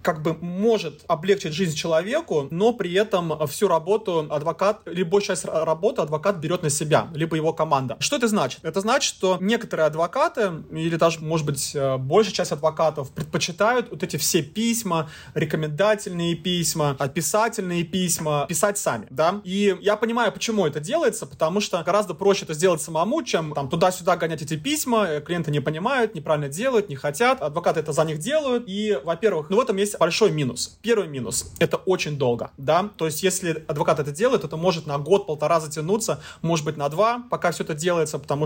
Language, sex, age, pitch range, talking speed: Russian, male, 30-49, 155-200 Hz, 180 wpm